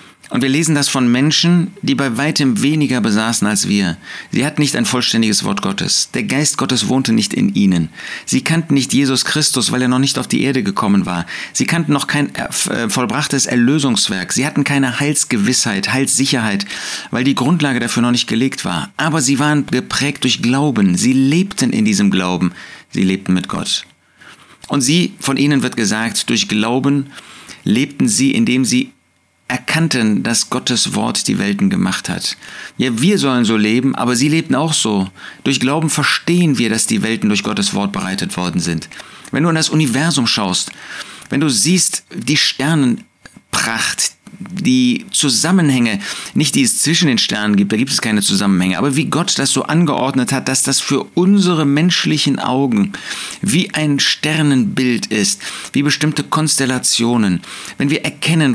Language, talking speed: German, 170 wpm